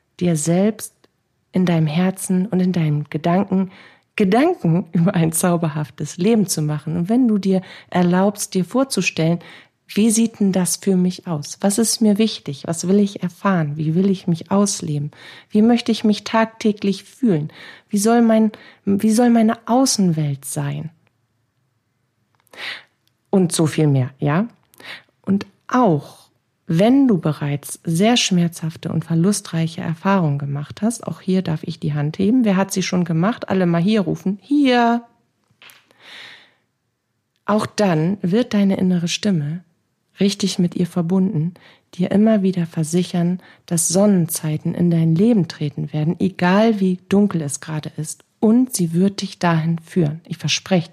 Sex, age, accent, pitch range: female, 40-59, German, 160-205 Hz